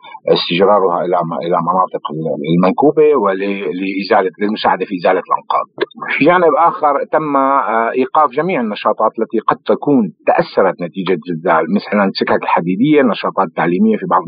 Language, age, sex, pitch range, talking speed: Arabic, 50-69, male, 100-120 Hz, 125 wpm